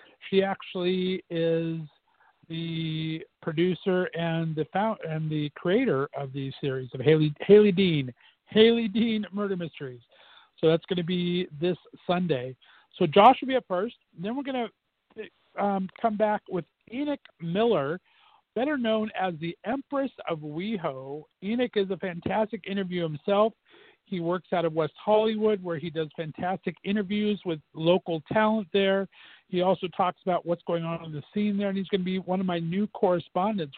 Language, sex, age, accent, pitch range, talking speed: English, male, 50-69, American, 165-215 Hz, 165 wpm